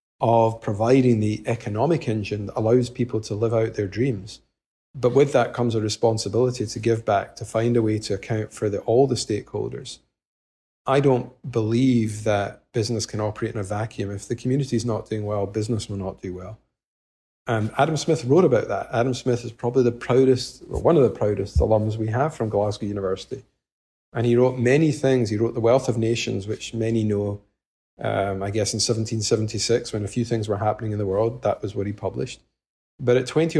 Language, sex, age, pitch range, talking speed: English, male, 40-59, 105-125 Hz, 200 wpm